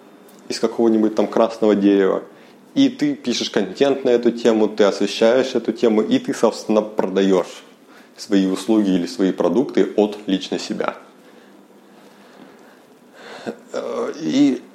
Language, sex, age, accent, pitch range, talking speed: Russian, male, 30-49, native, 95-130 Hz, 120 wpm